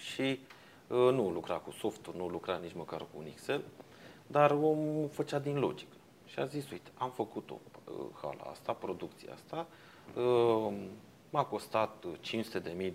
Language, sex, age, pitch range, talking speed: Romanian, male, 30-49, 95-150 Hz, 160 wpm